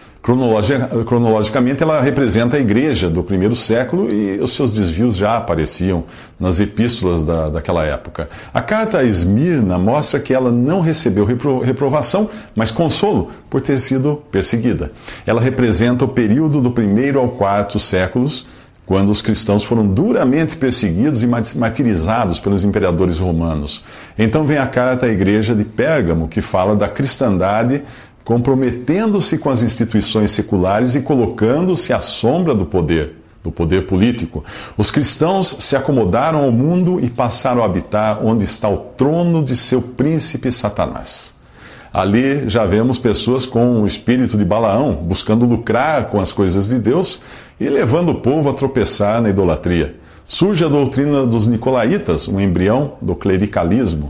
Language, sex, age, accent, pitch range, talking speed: Portuguese, male, 50-69, Brazilian, 100-130 Hz, 150 wpm